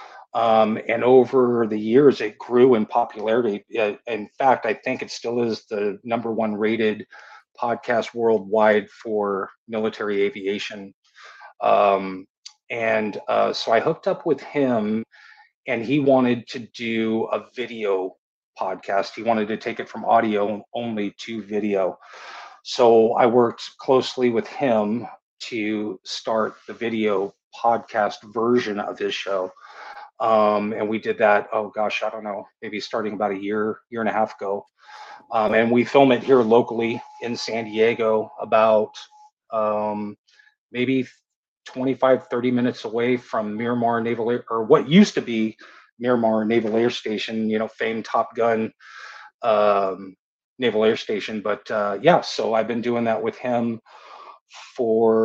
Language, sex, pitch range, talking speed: English, male, 105-120 Hz, 150 wpm